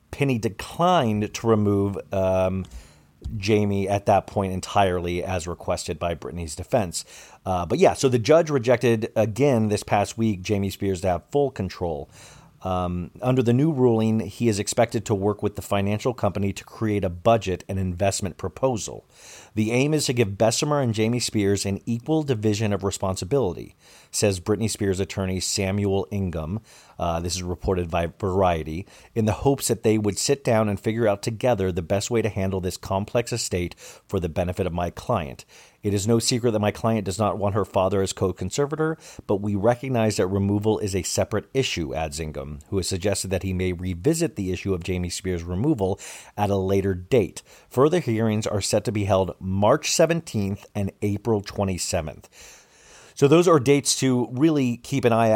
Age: 40-59